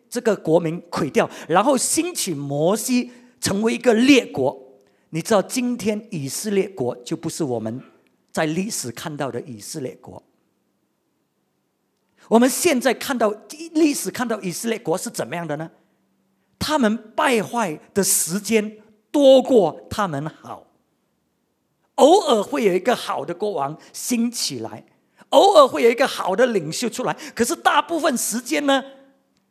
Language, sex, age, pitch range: English, male, 50-69, 190-265 Hz